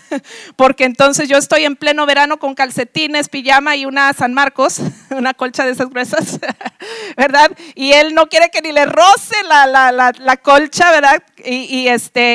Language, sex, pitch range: Spanish, female, 275-325 Hz